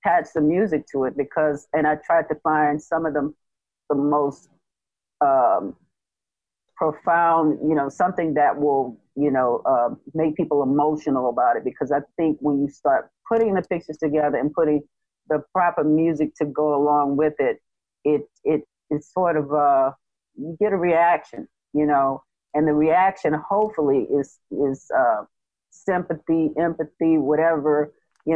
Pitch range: 145-175 Hz